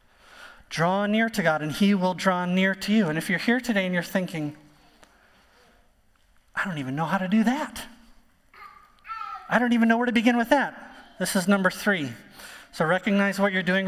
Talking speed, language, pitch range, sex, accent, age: 195 wpm, English, 155-225 Hz, male, American, 30-49